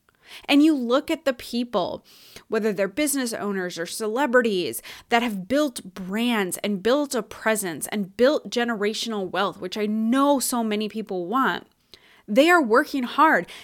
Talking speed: 155 wpm